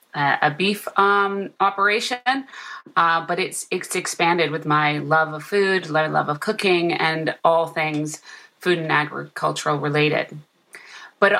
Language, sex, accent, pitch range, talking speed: English, female, American, 155-180 Hz, 135 wpm